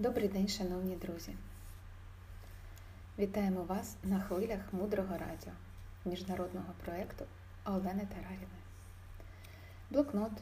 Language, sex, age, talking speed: Ukrainian, female, 20-39, 85 wpm